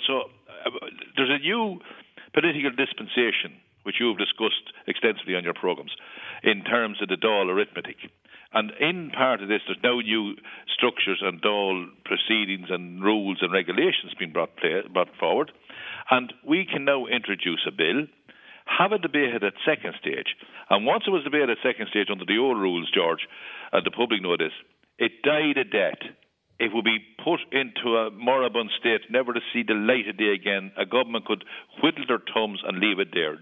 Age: 60-79